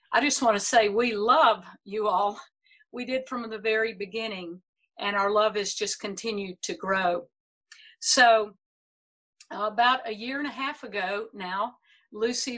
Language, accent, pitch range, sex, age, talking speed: English, American, 200-250 Hz, female, 50-69, 155 wpm